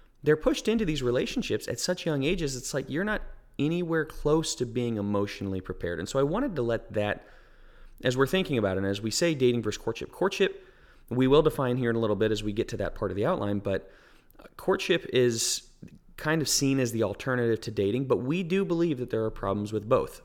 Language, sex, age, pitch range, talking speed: English, male, 30-49, 100-135 Hz, 230 wpm